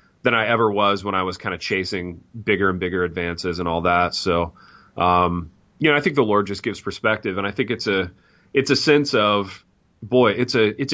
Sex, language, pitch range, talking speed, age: male, English, 90-105 Hz, 225 wpm, 30-49